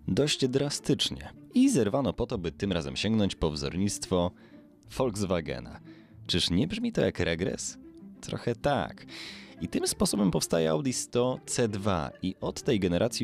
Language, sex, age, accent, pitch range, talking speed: Polish, male, 20-39, native, 90-130 Hz, 145 wpm